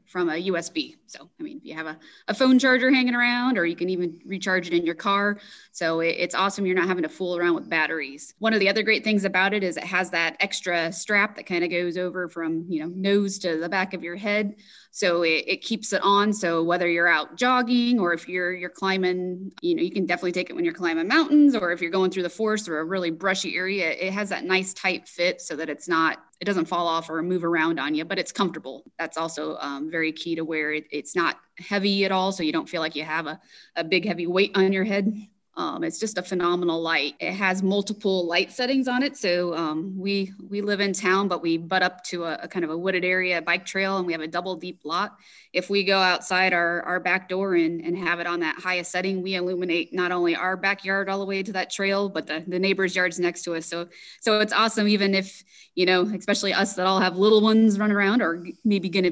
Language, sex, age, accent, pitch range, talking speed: English, female, 20-39, American, 175-205 Hz, 255 wpm